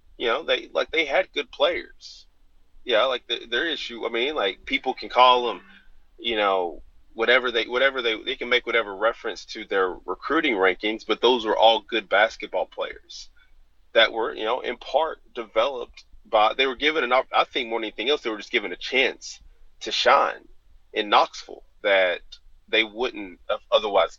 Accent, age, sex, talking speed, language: American, 30-49, male, 185 wpm, English